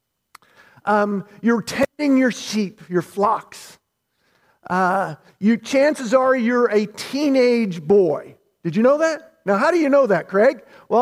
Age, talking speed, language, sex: 50-69, 140 wpm, English, male